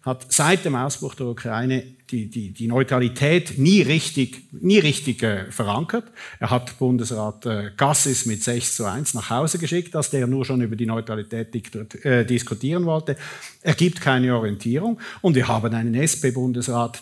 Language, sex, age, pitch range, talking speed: German, male, 50-69, 120-150 Hz, 160 wpm